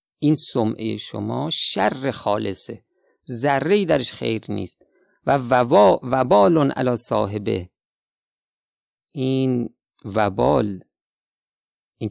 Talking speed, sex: 80 wpm, male